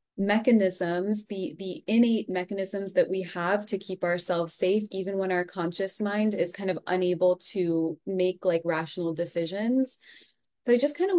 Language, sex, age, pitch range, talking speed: English, female, 20-39, 180-210 Hz, 165 wpm